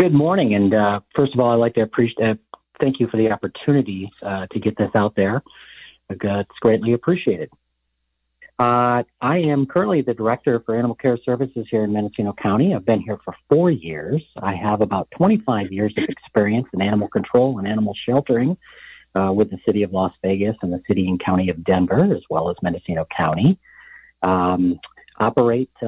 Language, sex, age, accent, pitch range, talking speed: English, male, 40-59, American, 100-130 Hz, 185 wpm